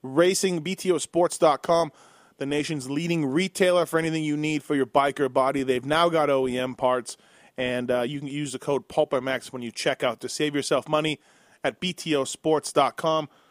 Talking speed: 170 wpm